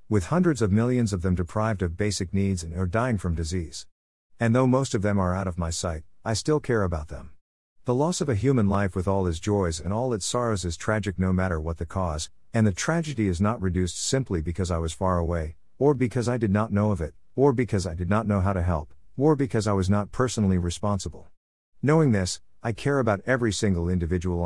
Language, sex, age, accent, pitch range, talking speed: English, male, 50-69, American, 85-115 Hz, 235 wpm